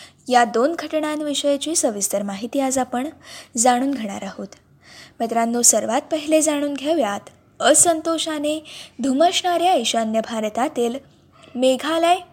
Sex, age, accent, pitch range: female, 20-39, native, 240-320 Hz